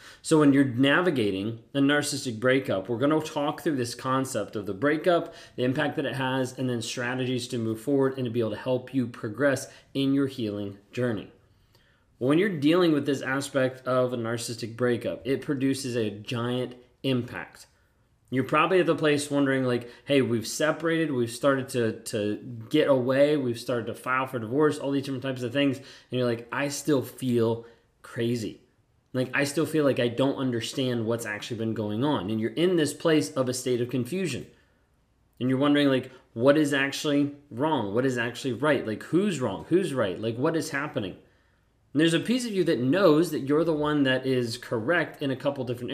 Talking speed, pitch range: 200 wpm, 120-140 Hz